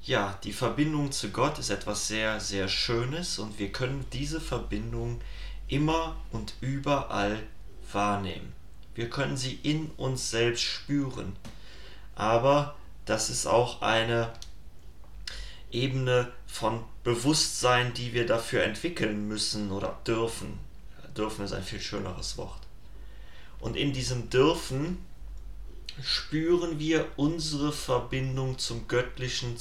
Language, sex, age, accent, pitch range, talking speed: German, male, 30-49, German, 105-135 Hz, 115 wpm